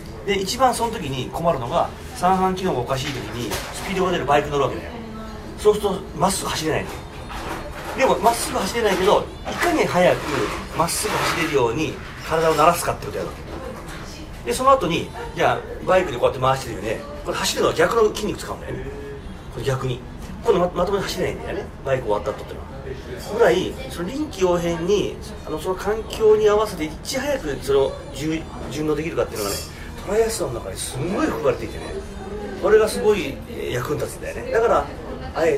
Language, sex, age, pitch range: Japanese, male, 40-59, 130-200 Hz